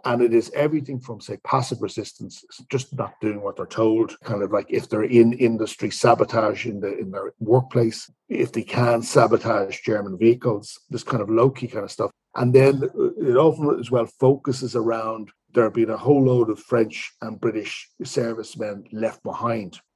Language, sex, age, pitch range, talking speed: English, male, 50-69, 105-125 Hz, 185 wpm